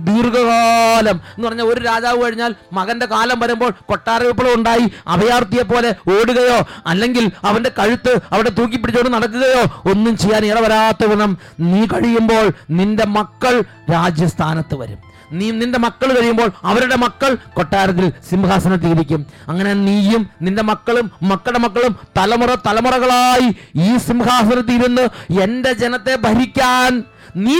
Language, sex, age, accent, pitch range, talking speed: English, male, 30-49, Indian, 205-260 Hz, 110 wpm